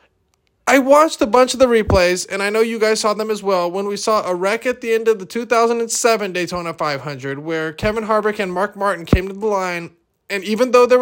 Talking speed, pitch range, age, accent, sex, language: 235 wpm, 180-225 Hz, 20-39, American, male, English